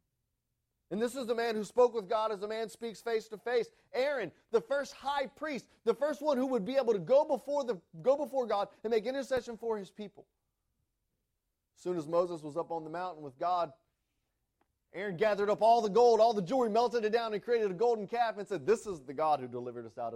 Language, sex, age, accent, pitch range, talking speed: English, male, 30-49, American, 130-220 Hz, 235 wpm